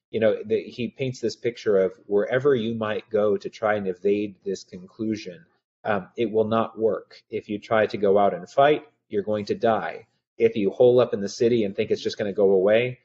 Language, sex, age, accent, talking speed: English, male, 30-49, American, 225 wpm